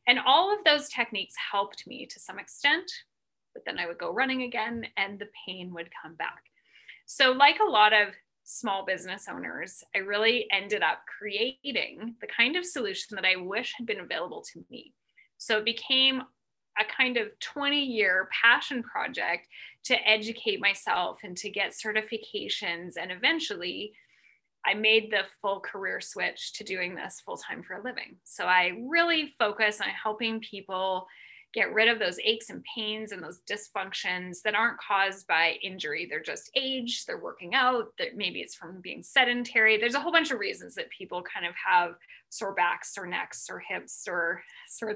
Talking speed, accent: 175 wpm, American